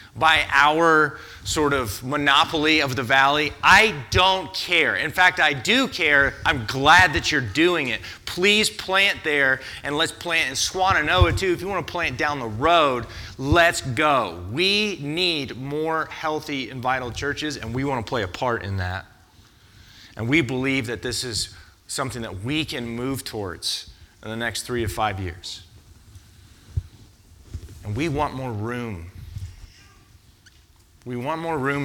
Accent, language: American, English